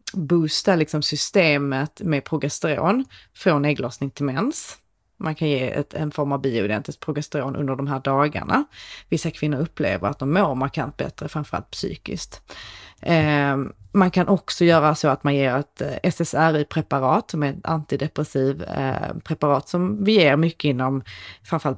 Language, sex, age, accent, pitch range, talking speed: Swedish, female, 30-49, native, 140-175 Hz, 155 wpm